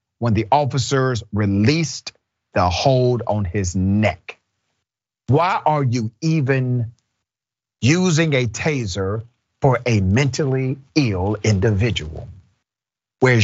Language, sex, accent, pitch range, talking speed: English, male, American, 105-130 Hz, 100 wpm